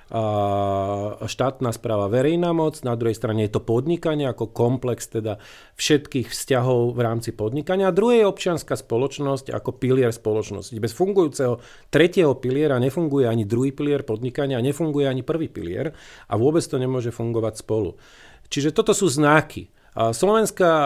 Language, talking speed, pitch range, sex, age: Slovak, 145 wpm, 115-150 Hz, male, 40-59